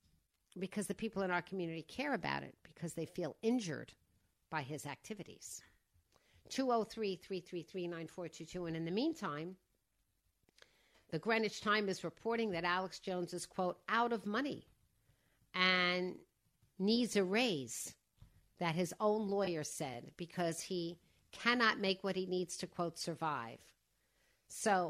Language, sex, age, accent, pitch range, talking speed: English, female, 50-69, American, 160-210 Hz, 150 wpm